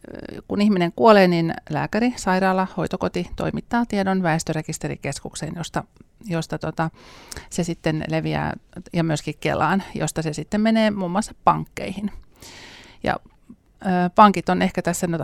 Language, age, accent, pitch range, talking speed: Finnish, 30-49, native, 165-210 Hz, 135 wpm